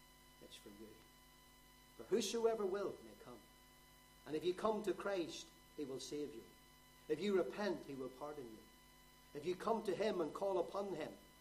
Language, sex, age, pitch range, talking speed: English, male, 50-69, 170-215 Hz, 175 wpm